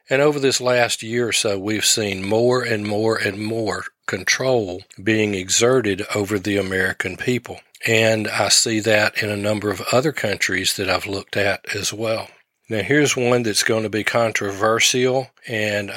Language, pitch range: English, 105-120 Hz